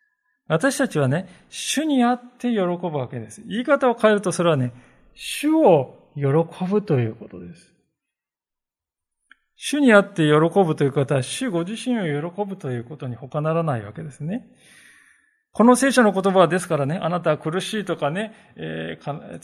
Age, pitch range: 20-39, 145-220 Hz